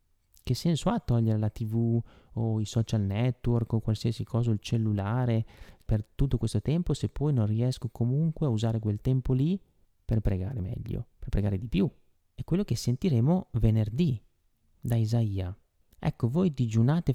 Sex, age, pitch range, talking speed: male, 30-49, 105-125 Hz, 160 wpm